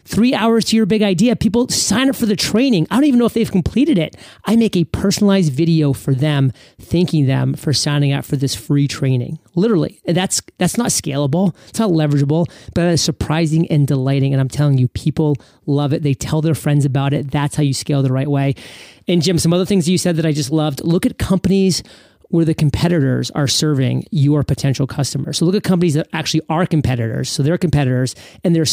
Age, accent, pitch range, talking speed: 30-49, American, 140-190 Hz, 215 wpm